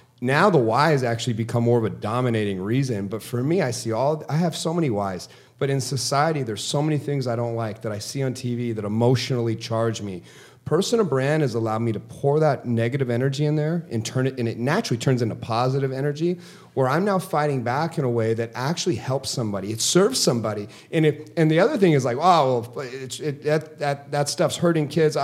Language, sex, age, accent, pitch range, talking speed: English, male, 30-49, American, 120-155 Hz, 225 wpm